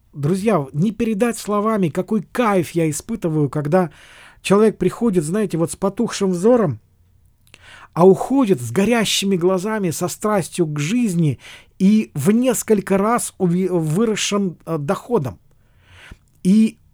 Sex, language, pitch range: male, Russian, 155-215 Hz